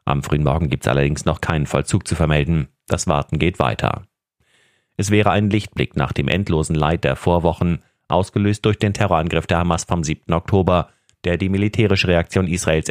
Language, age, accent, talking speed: German, 30-49, German, 180 wpm